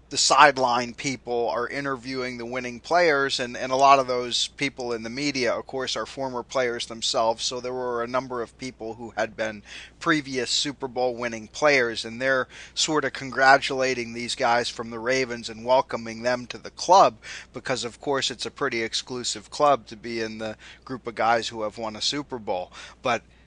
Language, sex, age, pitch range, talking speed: English, male, 30-49, 120-140 Hz, 195 wpm